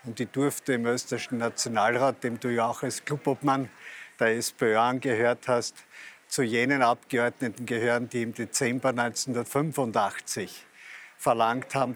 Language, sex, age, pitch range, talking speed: German, male, 50-69, 120-145 Hz, 130 wpm